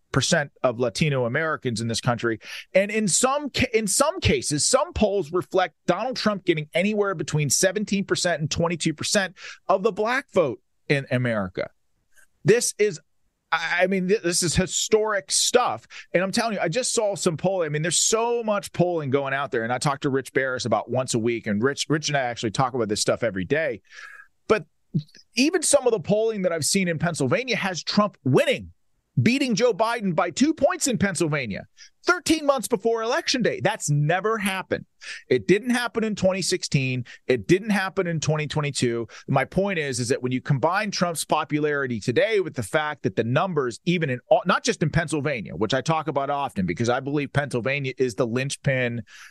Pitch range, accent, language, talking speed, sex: 130-195 Hz, American, English, 185 wpm, male